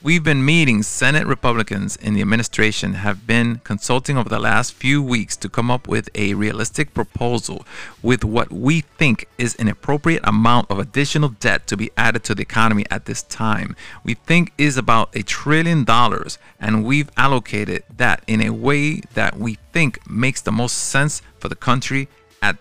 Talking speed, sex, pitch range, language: 180 wpm, male, 105-130 Hz, English